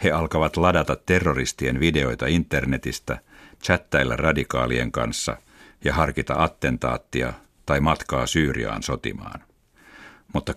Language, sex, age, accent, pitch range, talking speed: Finnish, male, 60-79, native, 65-85 Hz, 95 wpm